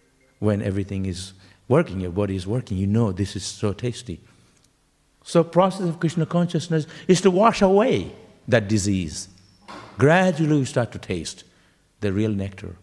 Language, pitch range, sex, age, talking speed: English, 95-130 Hz, male, 60-79, 155 wpm